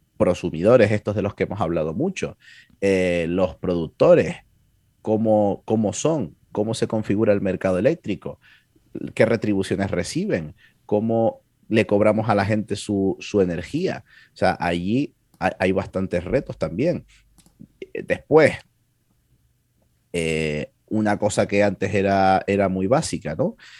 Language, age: Spanish, 30-49